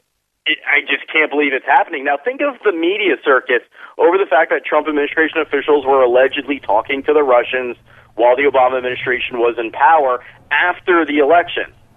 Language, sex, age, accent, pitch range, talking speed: English, male, 40-59, American, 125-200 Hz, 175 wpm